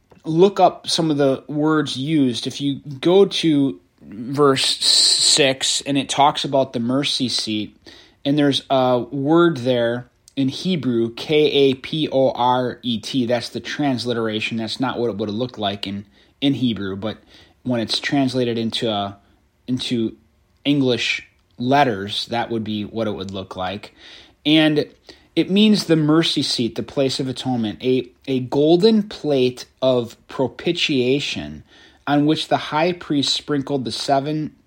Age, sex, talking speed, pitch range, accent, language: 20-39, male, 155 wpm, 115-150 Hz, American, English